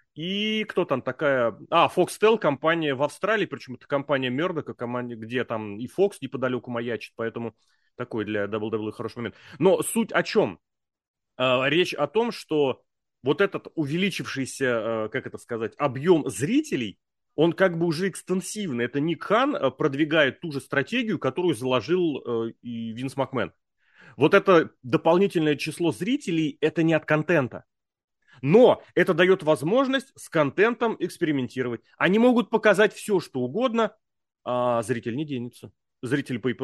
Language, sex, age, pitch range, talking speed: Russian, male, 30-49, 120-175 Hz, 140 wpm